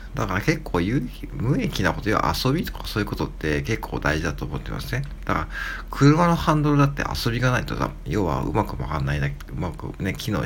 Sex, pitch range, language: male, 100-145 Hz, Japanese